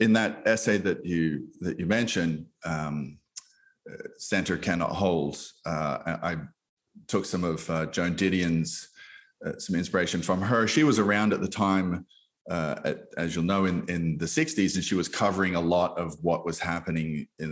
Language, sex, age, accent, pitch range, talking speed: English, male, 30-49, Australian, 85-110 Hz, 175 wpm